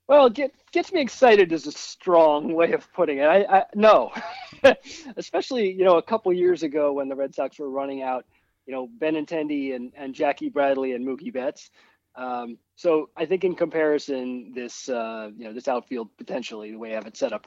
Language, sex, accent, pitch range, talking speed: English, male, American, 130-175 Hz, 210 wpm